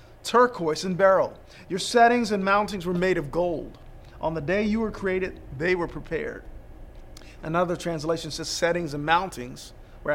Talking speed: 160 wpm